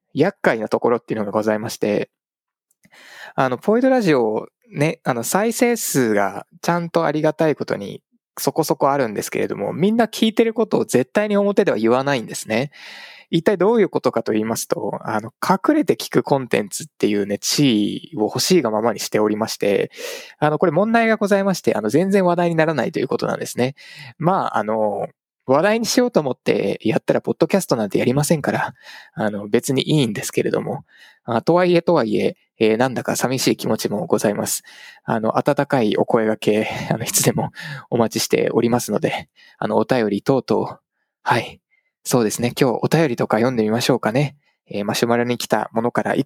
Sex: male